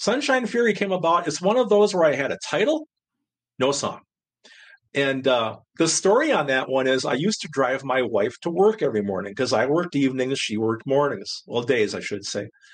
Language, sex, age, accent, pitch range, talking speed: English, male, 50-69, American, 130-190 Hz, 210 wpm